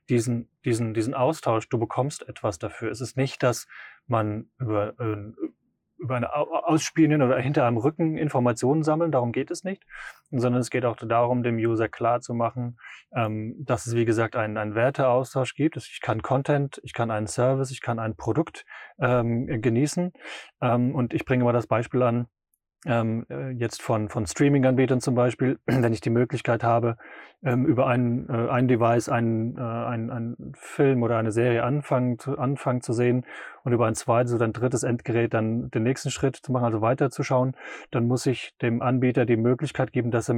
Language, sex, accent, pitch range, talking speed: German, male, German, 115-130 Hz, 170 wpm